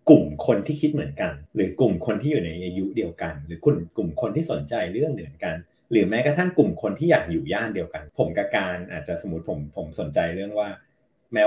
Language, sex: Thai, male